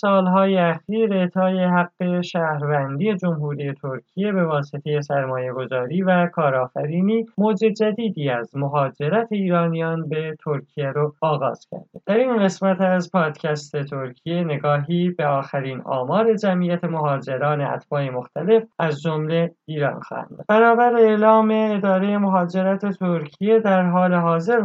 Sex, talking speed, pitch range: male, 120 wpm, 150-190 Hz